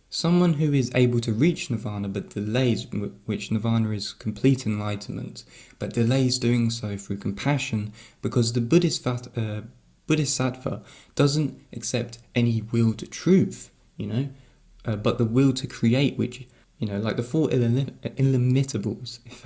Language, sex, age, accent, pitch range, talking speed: English, male, 20-39, British, 105-130 Hz, 145 wpm